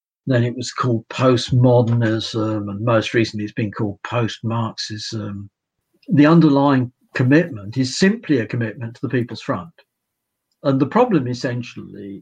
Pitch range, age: 115-145 Hz, 50-69